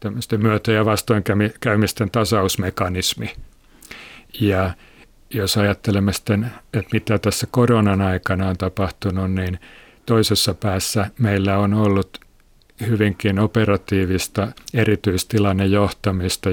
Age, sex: 50-69, male